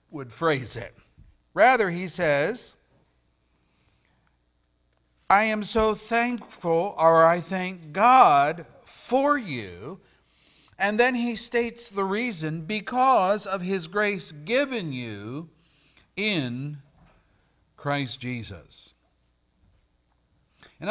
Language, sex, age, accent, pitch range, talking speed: English, male, 50-69, American, 130-210 Hz, 90 wpm